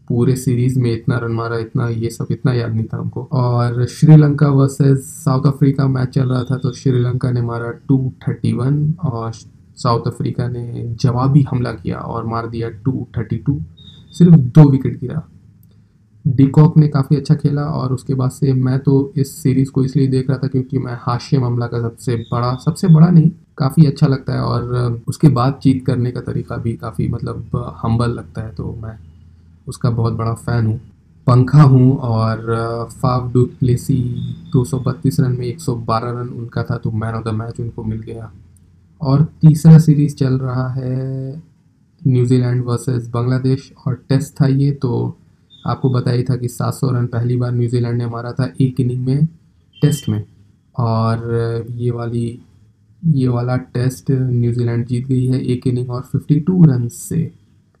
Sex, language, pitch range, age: male, Hindi, 115-135 Hz, 20-39